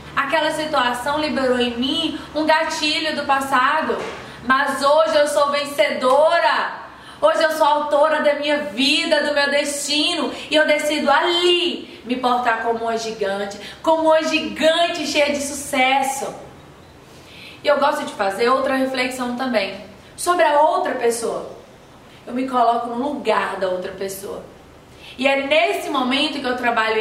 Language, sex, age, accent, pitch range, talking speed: Portuguese, female, 20-39, Brazilian, 235-305 Hz, 145 wpm